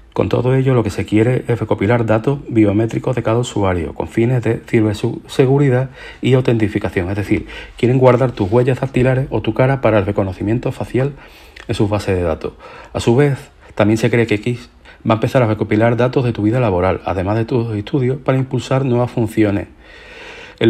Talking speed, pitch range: 190 wpm, 110-130 Hz